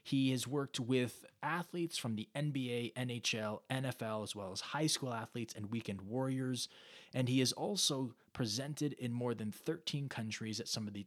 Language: English